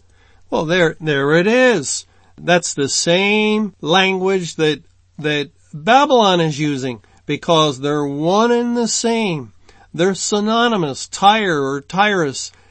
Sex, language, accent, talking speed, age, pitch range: male, English, American, 120 wpm, 50-69, 145-205 Hz